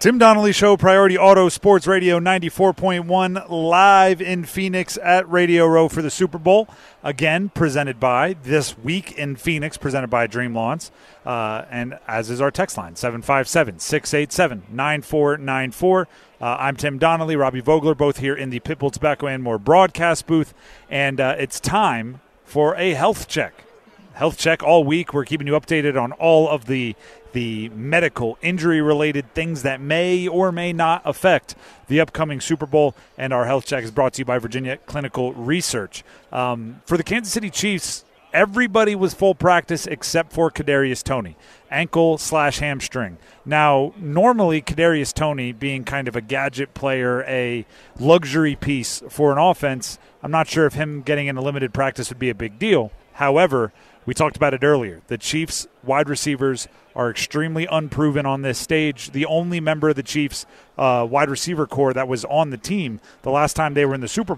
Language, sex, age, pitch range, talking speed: English, male, 40-59, 130-165 Hz, 175 wpm